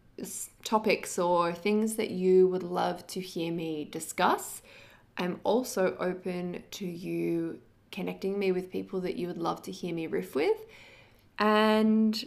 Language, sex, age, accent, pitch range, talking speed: English, female, 20-39, Australian, 175-200 Hz, 145 wpm